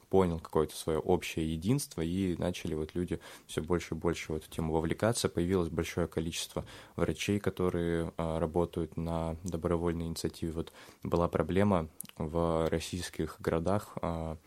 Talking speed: 125 wpm